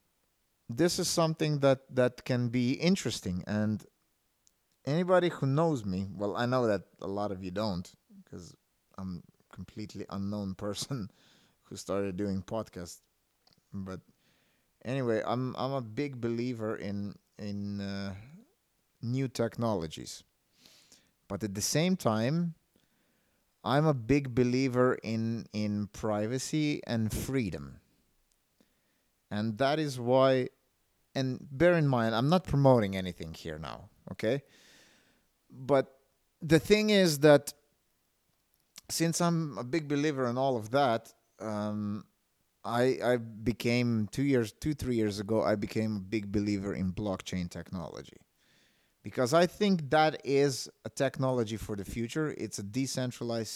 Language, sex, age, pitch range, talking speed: English, male, 30-49, 105-135 Hz, 130 wpm